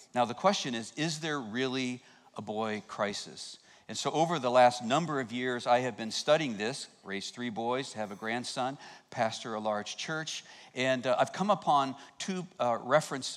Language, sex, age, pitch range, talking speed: English, male, 50-69, 110-135 Hz, 185 wpm